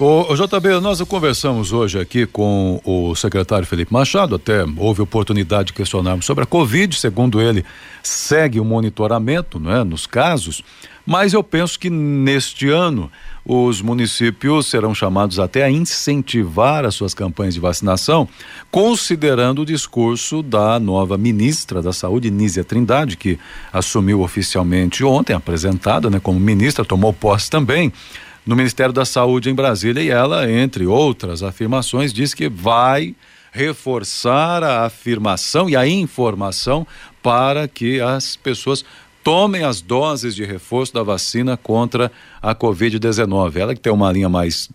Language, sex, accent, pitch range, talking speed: Portuguese, male, Brazilian, 100-140 Hz, 145 wpm